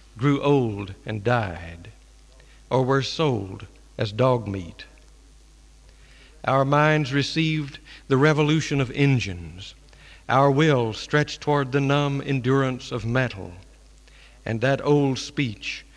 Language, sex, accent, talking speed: English, male, American, 115 wpm